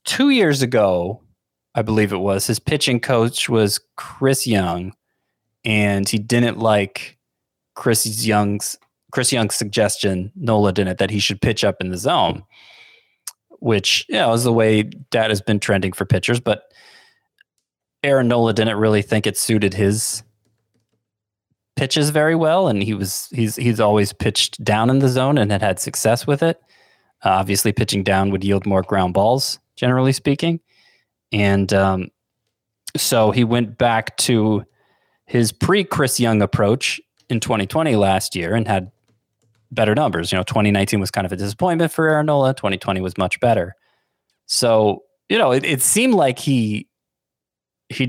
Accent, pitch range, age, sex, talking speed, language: American, 100-125 Hz, 20-39, male, 160 wpm, English